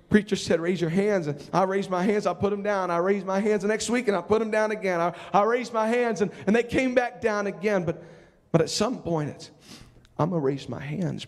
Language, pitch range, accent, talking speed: English, 195-255 Hz, American, 265 wpm